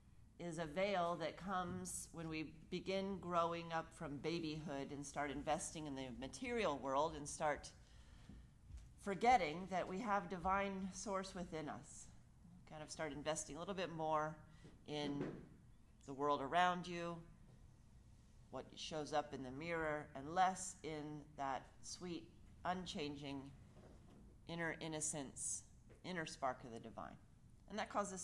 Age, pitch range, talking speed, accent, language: 40-59, 135-180 Hz, 135 wpm, American, English